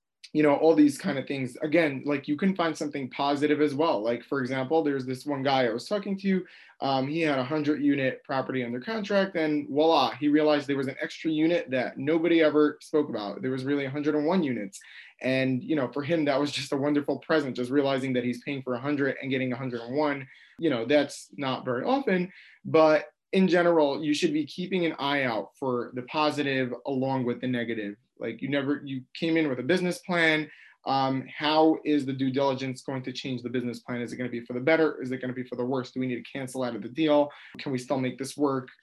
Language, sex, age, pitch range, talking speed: English, male, 20-39, 130-155 Hz, 235 wpm